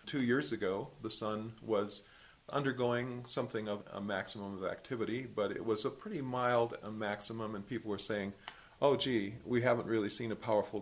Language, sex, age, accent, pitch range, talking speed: English, male, 40-59, American, 100-115 Hz, 175 wpm